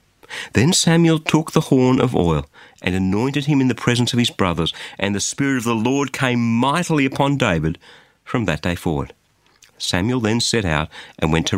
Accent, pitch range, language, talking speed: Australian, 100-165 Hz, English, 190 wpm